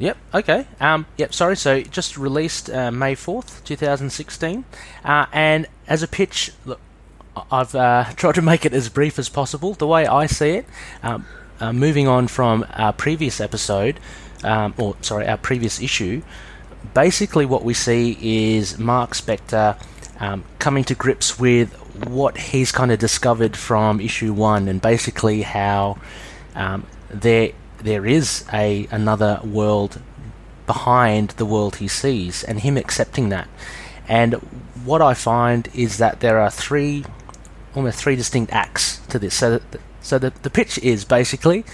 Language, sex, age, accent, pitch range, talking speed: English, male, 30-49, Australian, 110-140 Hz, 155 wpm